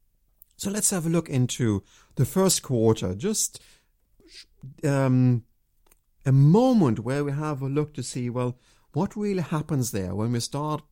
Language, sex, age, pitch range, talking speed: English, male, 50-69, 115-165 Hz, 155 wpm